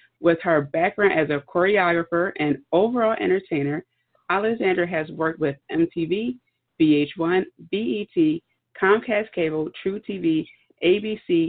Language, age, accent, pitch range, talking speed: English, 40-59, American, 155-215 Hz, 110 wpm